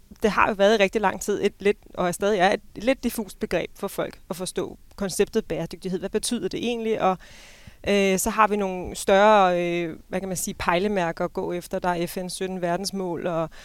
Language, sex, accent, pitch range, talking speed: Danish, female, native, 185-215 Hz, 225 wpm